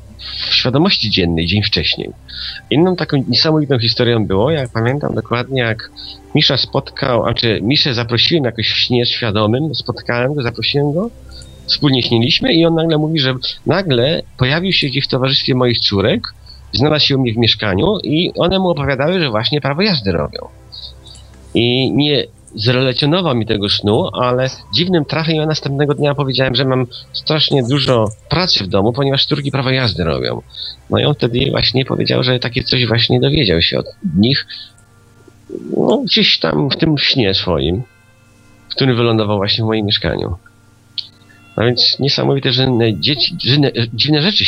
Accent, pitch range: native, 105-145 Hz